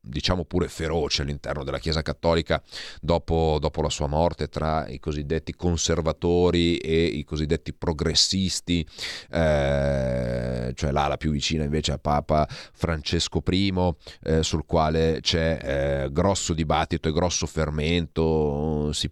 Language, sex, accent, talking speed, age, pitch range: Italian, male, native, 130 wpm, 30-49, 75-85 Hz